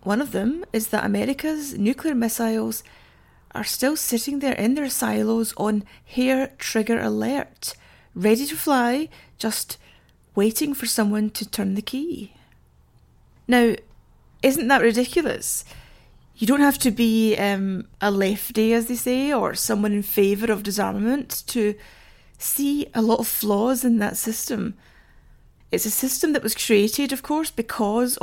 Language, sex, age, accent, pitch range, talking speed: English, female, 30-49, British, 210-260 Hz, 145 wpm